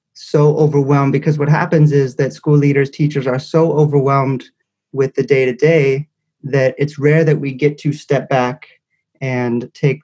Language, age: English, 30-49